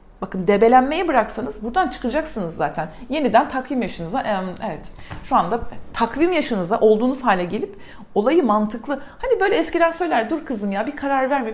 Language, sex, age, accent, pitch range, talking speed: Turkish, female, 40-59, native, 215-285 Hz, 150 wpm